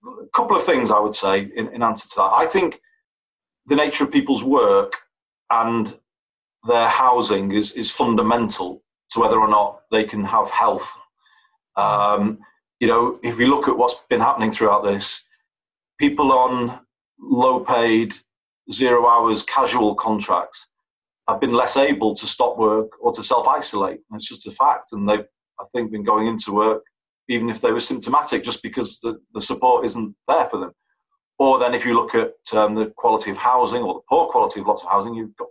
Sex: male